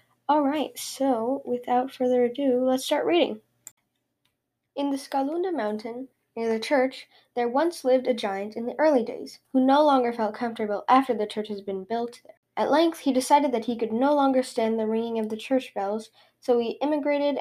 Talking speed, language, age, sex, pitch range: 190 wpm, English, 10-29, female, 215-265 Hz